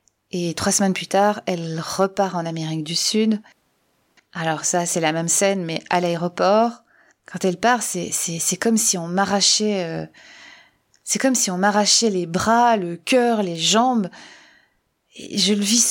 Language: French